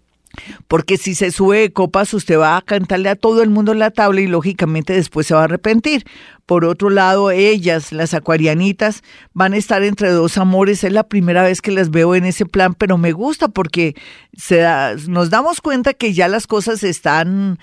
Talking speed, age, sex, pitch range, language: 195 wpm, 40-59, female, 165-210 Hz, Spanish